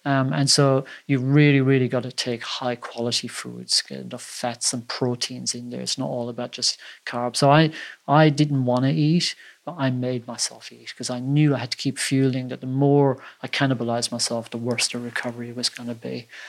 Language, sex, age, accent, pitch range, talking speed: English, male, 40-59, British, 130-155 Hz, 205 wpm